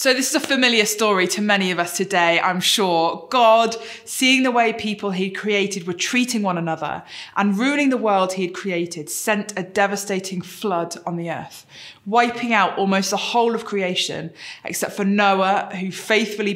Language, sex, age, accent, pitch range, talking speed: English, female, 20-39, British, 170-210 Hz, 180 wpm